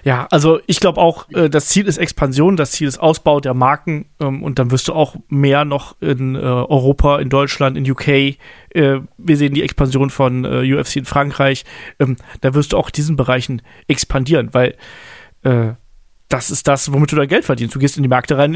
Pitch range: 135-160 Hz